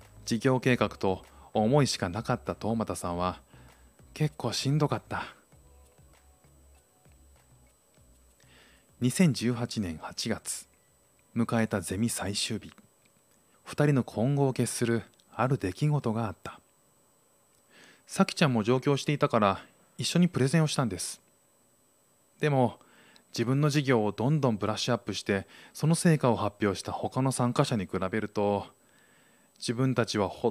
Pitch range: 100-130 Hz